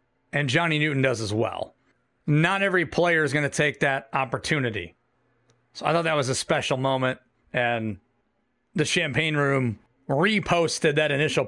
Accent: American